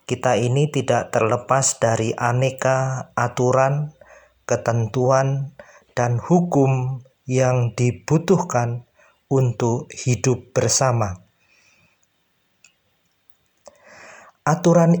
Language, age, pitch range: Indonesian, 50-69, 120-150 Hz